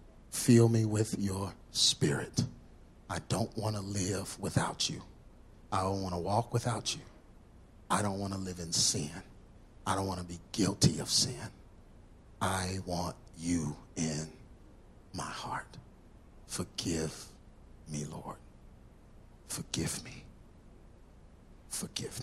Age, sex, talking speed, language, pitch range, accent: 50-69, male, 125 wpm, English, 85-105 Hz, American